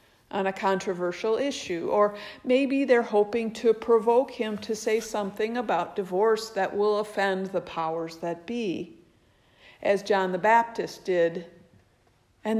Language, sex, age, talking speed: English, female, 50-69, 140 wpm